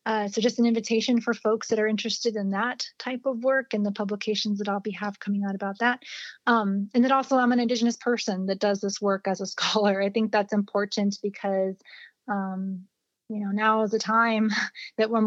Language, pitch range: English, 205-230 Hz